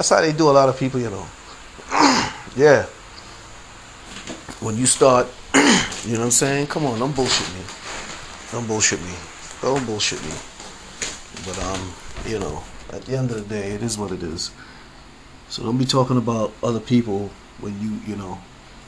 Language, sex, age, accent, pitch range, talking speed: English, male, 30-49, American, 95-125 Hz, 180 wpm